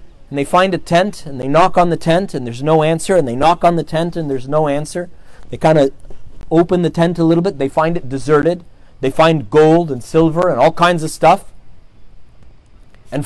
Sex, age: male, 30-49